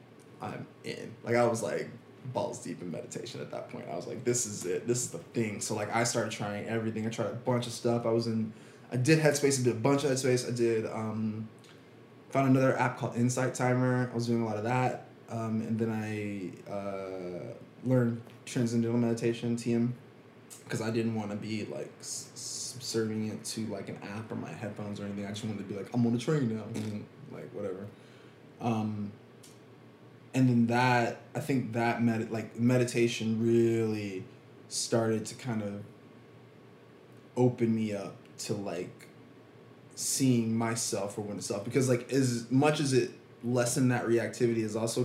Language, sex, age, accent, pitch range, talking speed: English, male, 20-39, American, 110-125 Hz, 190 wpm